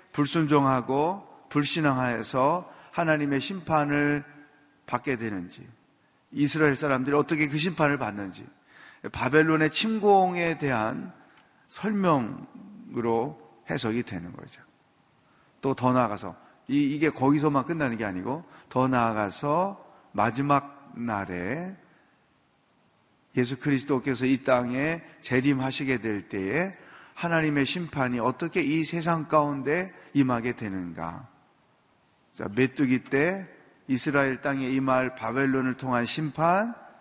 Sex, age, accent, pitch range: male, 40-59, native, 125-160 Hz